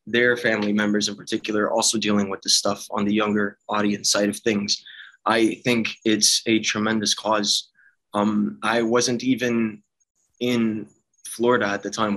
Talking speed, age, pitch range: 160 wpm, 20-39, 105-115 Hz